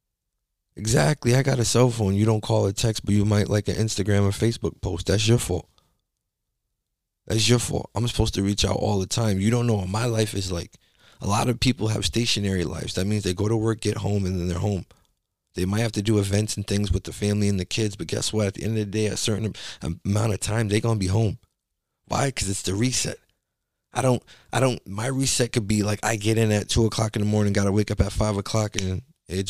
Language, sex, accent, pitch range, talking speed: English, male, American, 95-110 Hz, 255 wpm